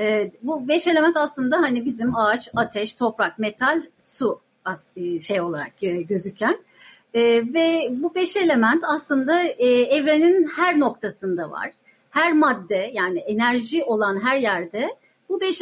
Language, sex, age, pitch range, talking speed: Turkish, female, 40-59, 215-320 Hz, 125 wpm